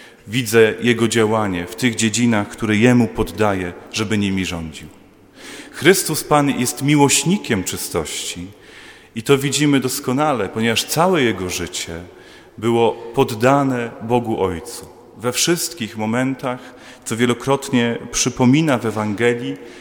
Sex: male